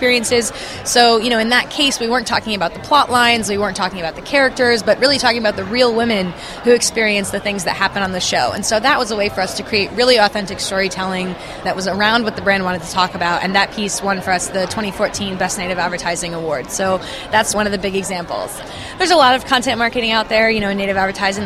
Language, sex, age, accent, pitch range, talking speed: English, female, 20-39, American, 190-235 Hz, 255 wpm